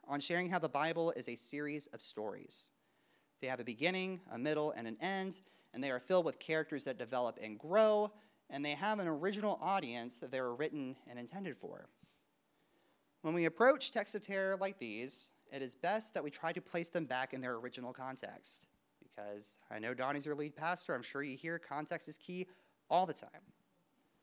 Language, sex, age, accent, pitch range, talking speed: English, male, 30-49, American, 135-205 Hz, 200 wpm